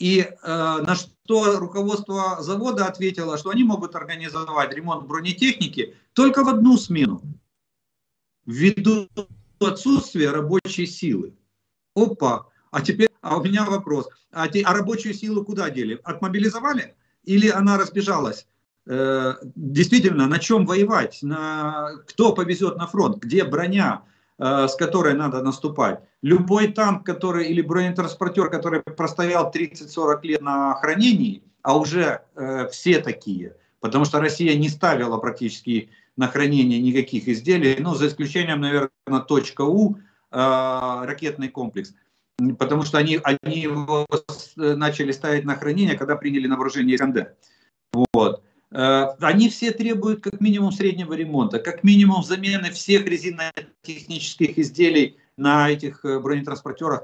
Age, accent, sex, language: 50-69, native, male, Russian